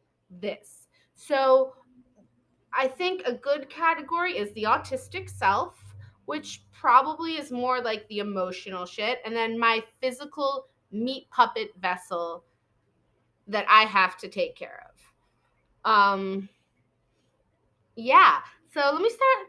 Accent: American